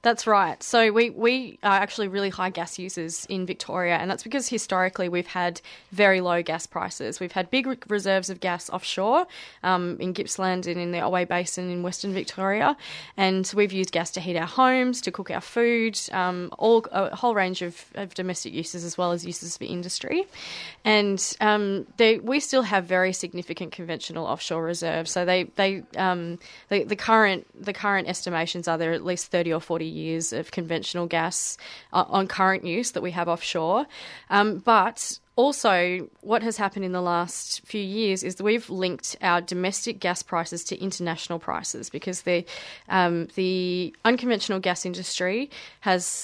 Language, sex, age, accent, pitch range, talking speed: English, female, 20-39, Australian, 175-200 Hz, 180 wpm